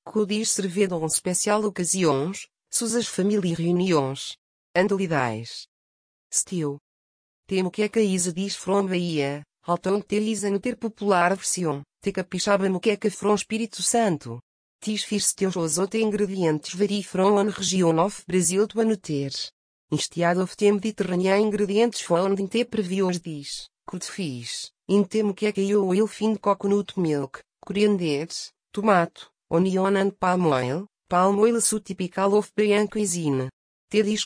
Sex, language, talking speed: female, Portuguese, 145 wpm